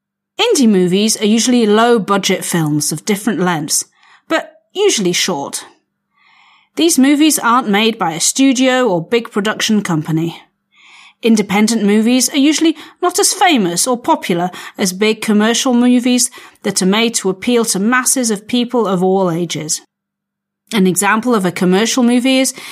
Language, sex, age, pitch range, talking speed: Slovak, female, 40-59, 190-260 Hz, 145 wpm